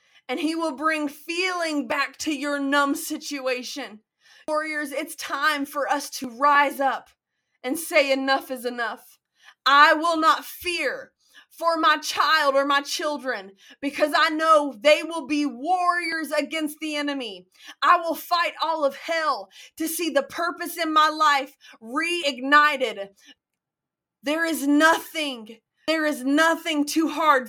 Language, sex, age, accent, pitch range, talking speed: English, female, 20-39, American, 270-315 Hz, 140 wpm